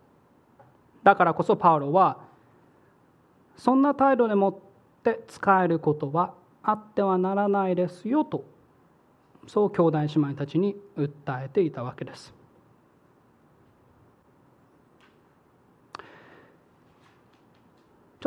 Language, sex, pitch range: Japanese, male, 155-205 Hz